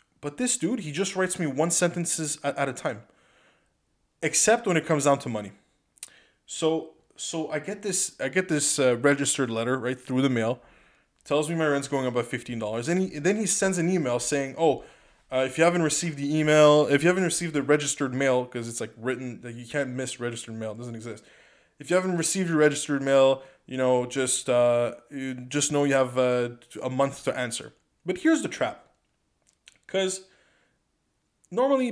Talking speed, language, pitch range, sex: 200 wpm, English, 130-170 Hz, male